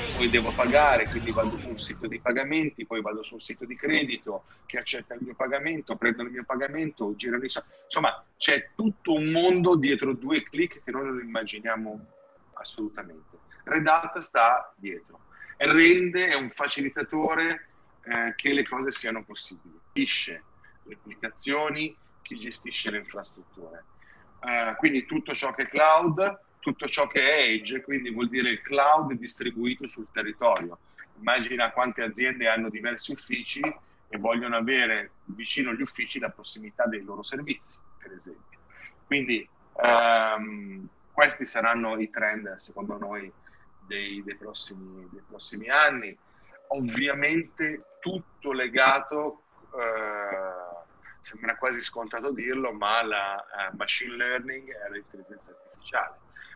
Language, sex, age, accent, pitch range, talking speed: Italian, male, 40-59, native, 110-150 Hz, 135 wpm